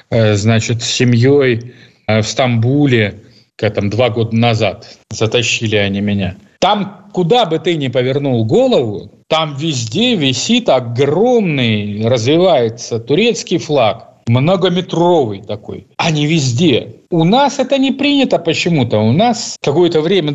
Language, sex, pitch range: Russian, male, 120-165 Hz